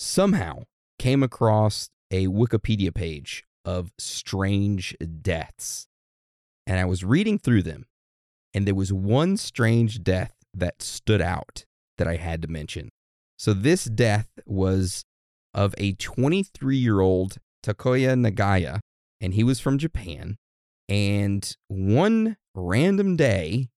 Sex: male